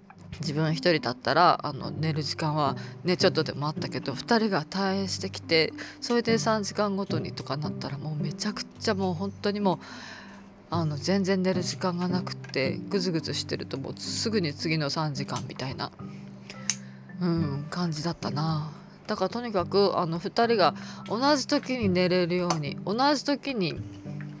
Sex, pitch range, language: female, 160-210 Hz, Japanese